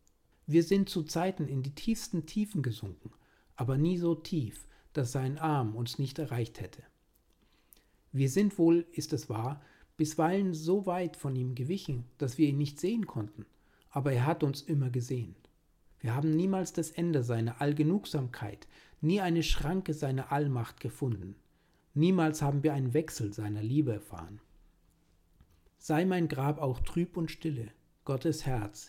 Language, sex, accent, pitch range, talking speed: German, male, German, 120-160 Hz, 155 wpm